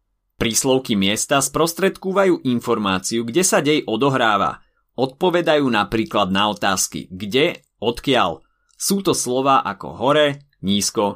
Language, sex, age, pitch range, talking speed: Slovak, male, 30-49, 110-150 Hz, 110 wpm